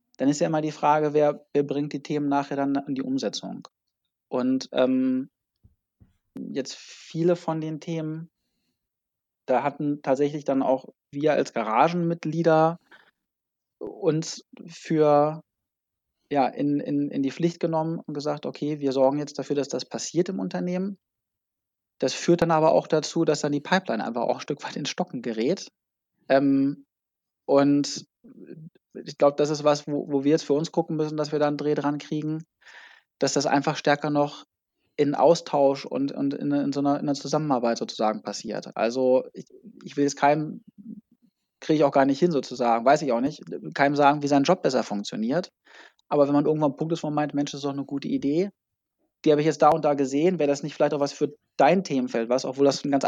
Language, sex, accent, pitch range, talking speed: German, male, German, 140-155 Hz, 195 wpm